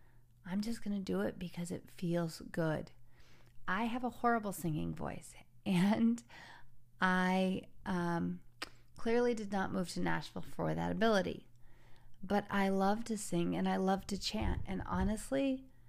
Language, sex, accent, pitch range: English, female, American, 120-185 Hz